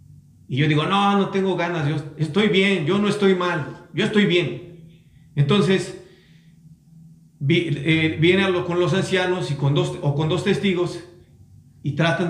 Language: Spanish